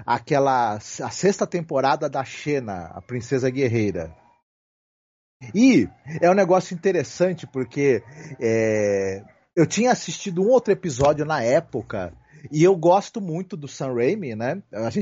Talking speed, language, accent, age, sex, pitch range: 135 wpm, Portuguese, Brazilian, 40-59, male, 130-180 Hz